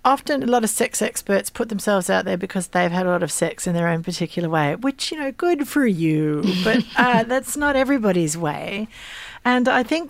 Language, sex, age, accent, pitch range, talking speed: English, female, 40-59, Australian, 170-230 Hz, 220 wpm